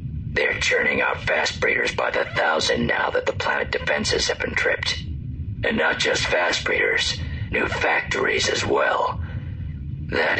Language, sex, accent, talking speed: English, male, American, 150 wpm